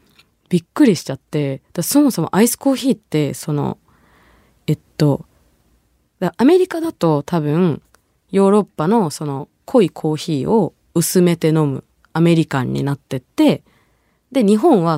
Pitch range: 145-210 Hz